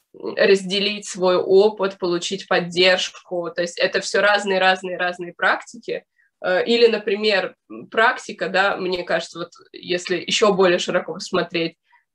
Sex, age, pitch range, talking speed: female, 20-39, 180-220 Hz, 125 wpm